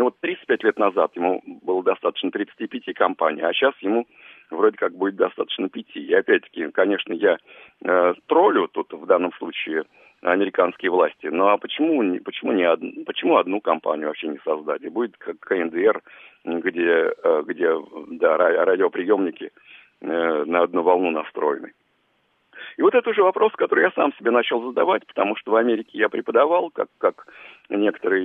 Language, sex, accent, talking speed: Russian, male, native, 145 wpm